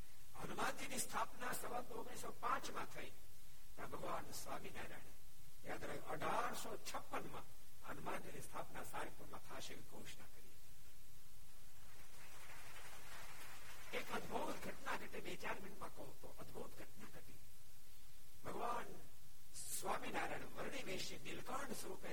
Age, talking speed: 60-79, 105 wpm